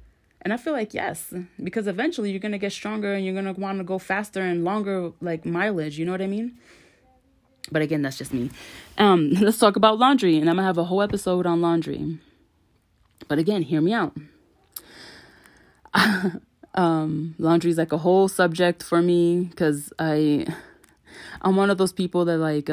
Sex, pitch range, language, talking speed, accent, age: female, 155-195 Hz, English, 185 wpm, American, 20-39